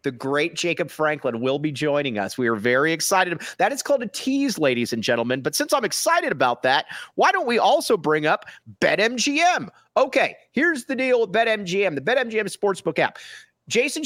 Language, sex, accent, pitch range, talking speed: English, male, American, 145-235 Hz, 190 wpm